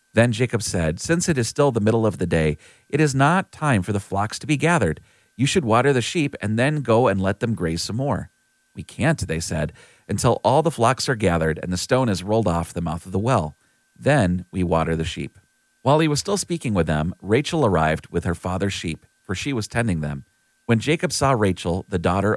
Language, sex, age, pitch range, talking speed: English, male, 40-59, 85-125 Hz, 230 wpm